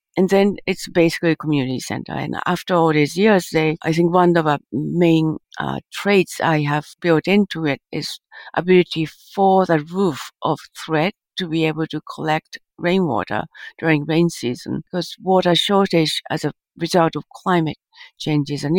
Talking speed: 170 wpm